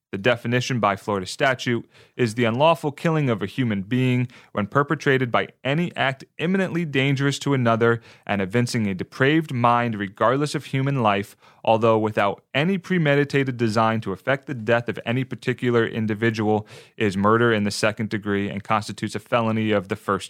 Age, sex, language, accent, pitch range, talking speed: 30-49, male, English, American, 110-130 Hz, 170 wpm